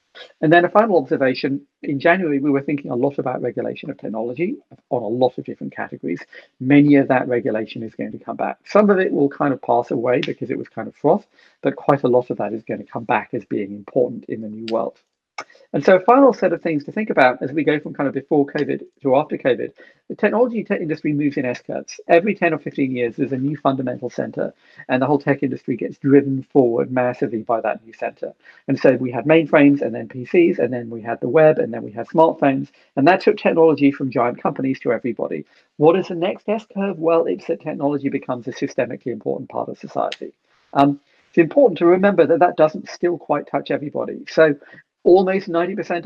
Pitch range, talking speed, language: 130-170 Hz, 225 wpm, English